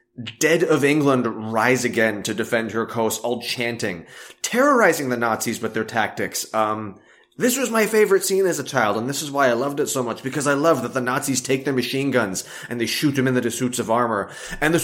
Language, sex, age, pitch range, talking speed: English, male, 20-39, 110-135 Hz, 225 wpm